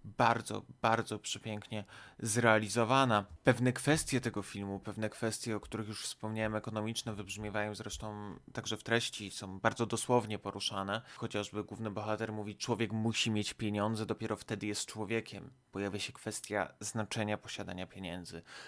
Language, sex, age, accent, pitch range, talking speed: Polish, male, 20-39, native, 105-120 Hz, 135 wpm